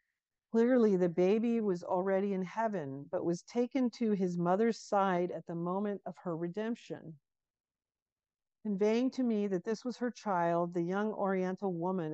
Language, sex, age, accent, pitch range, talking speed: English, female, 50-69, American, 170-220 Hz, 160 wpm